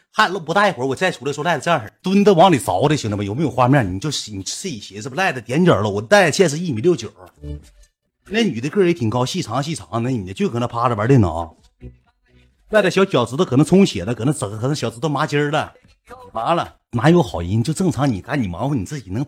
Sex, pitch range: male, 100-150 Hz